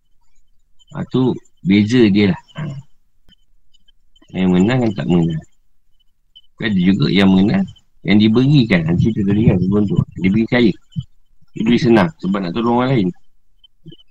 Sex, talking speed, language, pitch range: male, 120 wpm, Malay, 95-125 Hz